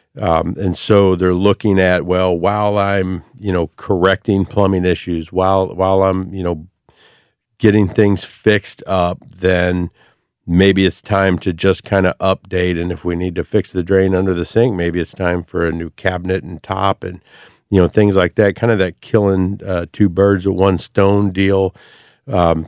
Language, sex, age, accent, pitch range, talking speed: English, male, 50-69, American, 90-105 Hz, 185 wpm